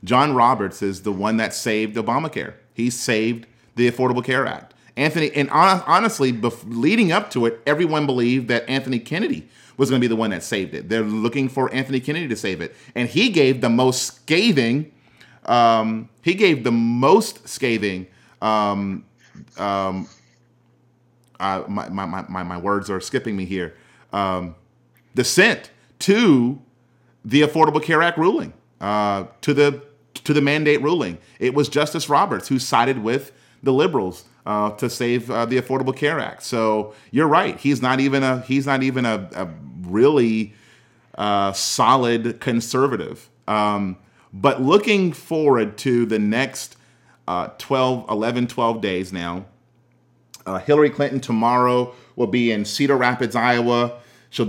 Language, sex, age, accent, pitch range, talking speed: English, male, 30-49, American, 110-135 Hz, 155 wpm